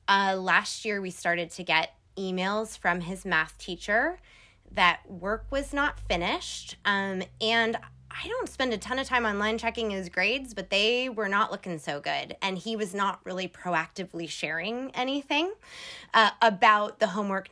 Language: English